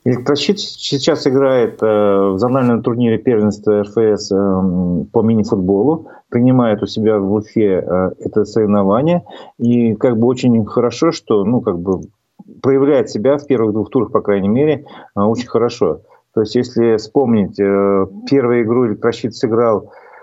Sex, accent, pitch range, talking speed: male, native, 105-130 Hz, 135 wpm